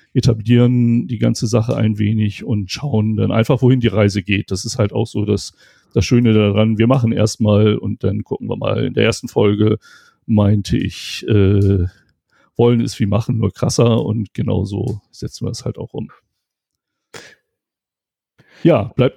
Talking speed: 170 wpm